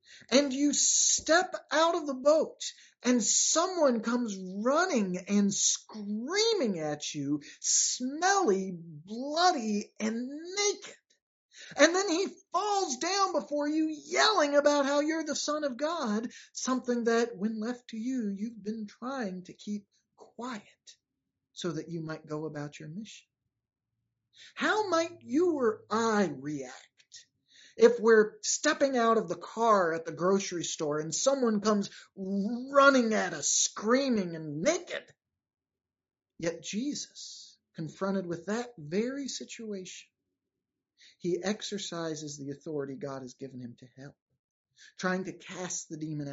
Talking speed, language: 130 wpm, English